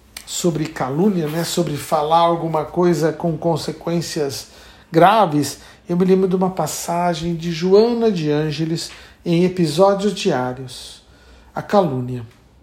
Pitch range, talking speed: 165-210 Hz, 120 wpm